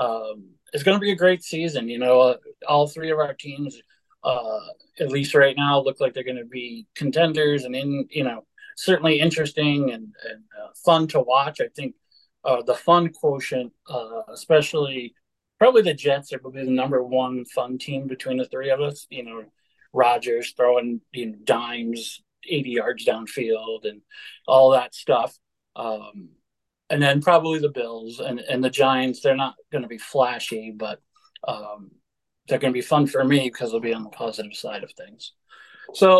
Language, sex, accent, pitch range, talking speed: English, male, American, 125-165 Hz, 180 wpm